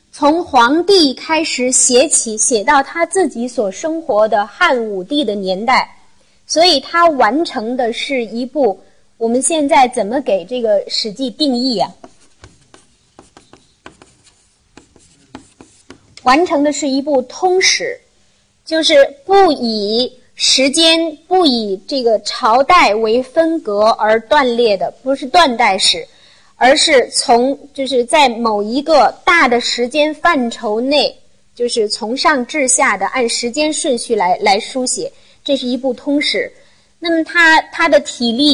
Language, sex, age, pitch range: Chinese, female, 30-49, 235-325 Hz